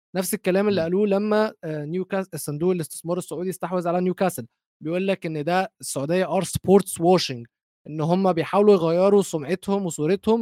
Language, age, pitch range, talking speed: Arabic, 20-39, 155-195 Hz, 150 wpm